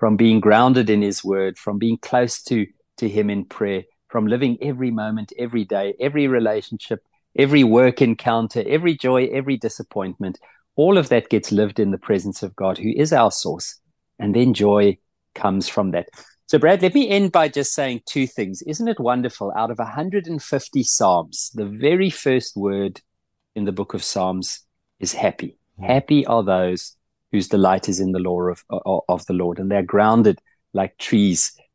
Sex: male